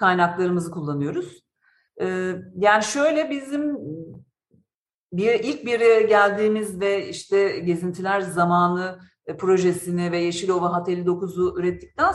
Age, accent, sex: 50-69, native, female